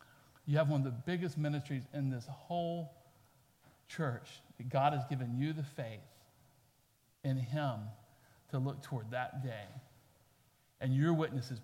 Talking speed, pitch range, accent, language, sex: 145 wpm, 125-150 Hz, American, English, male